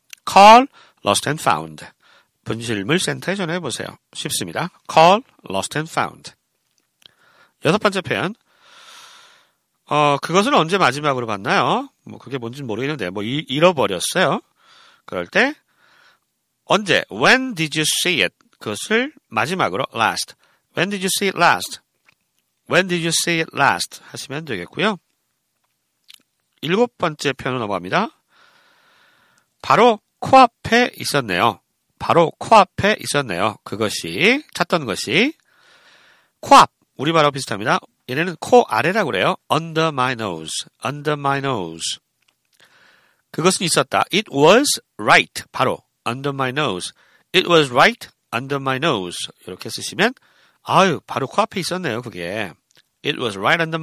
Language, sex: Korean, male